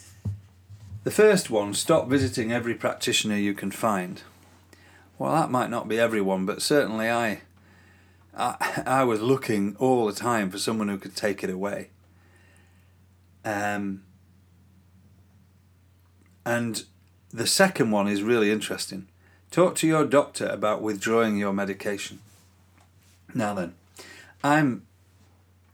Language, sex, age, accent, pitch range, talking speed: English, male, 40-59, British, 90-115 Hz, 120 wpm